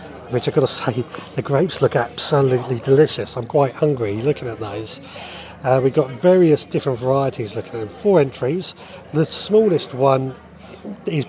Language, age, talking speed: English, 40-59, 165 wpm